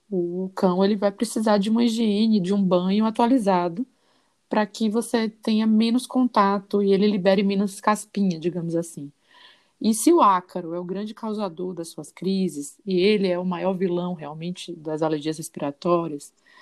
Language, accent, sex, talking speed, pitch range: Portuguese, Brazilian, female, 165 wpm, 180-230 Hz